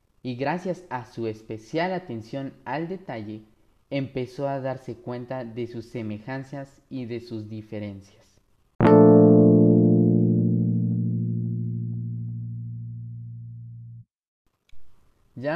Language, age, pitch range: Spanish, 20-39, 110-125 Hz